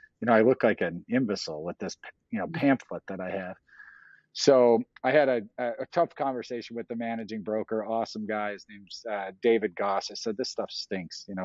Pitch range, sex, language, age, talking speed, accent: 95-125 Hz, male, English, 40-59, 210 wpm, American